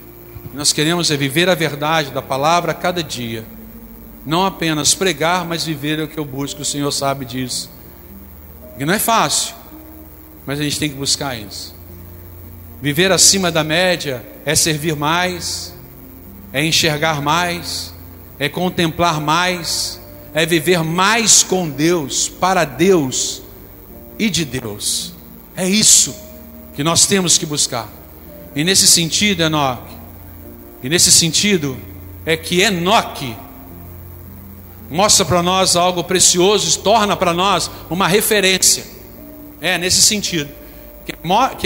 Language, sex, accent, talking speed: Portuguese, male, Brazilian, 130 wpm